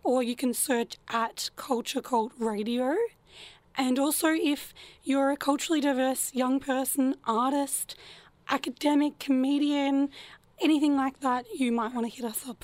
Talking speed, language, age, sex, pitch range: 145 wpm, English, 20-39, female, 230-280 Hz